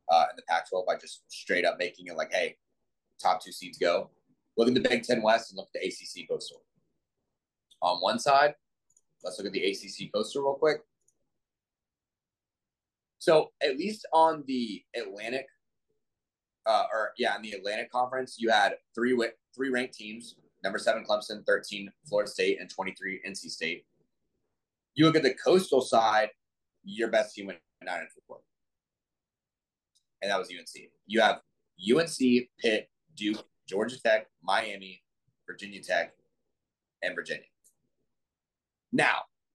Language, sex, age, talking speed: English, male, 30-49, 150 wpm